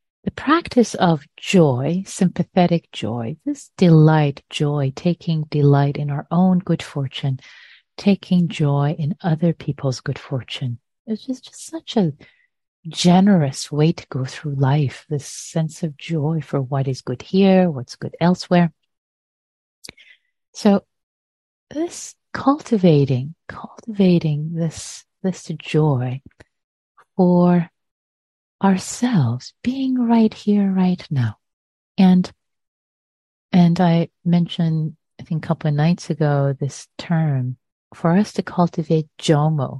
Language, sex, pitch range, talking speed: English, female, 145-185 Hz, 120 wpm